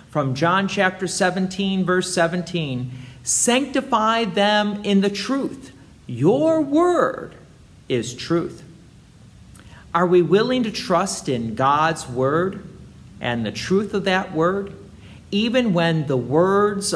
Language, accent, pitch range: English, American, 135-200 Hz